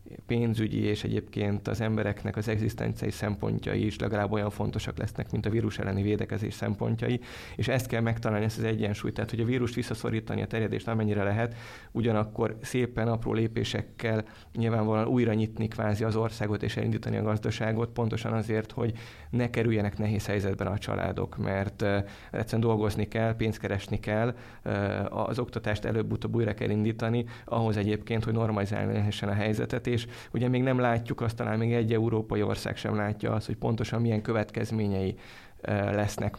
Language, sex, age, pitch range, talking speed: Hungarian, male, 20-39, 105-115 Hz, 160 wpm